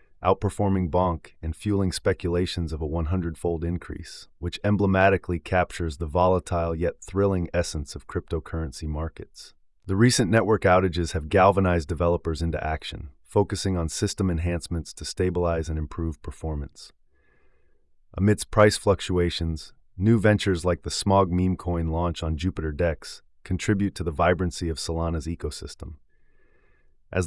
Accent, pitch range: American, 80-95 Hz